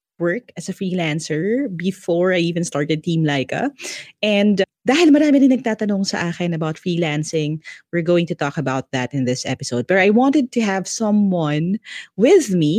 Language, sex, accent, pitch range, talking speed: English, female, Filipino, 160-210 Hz, 170 wpm